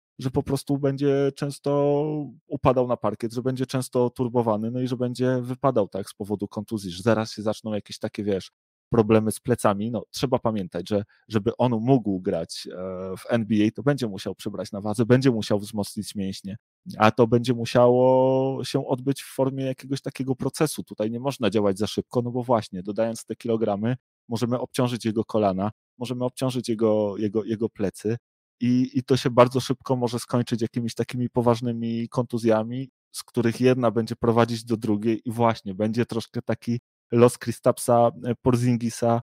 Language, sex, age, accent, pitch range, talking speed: Polish, male, 30-49, native, 110-125 Hz, 170 wpm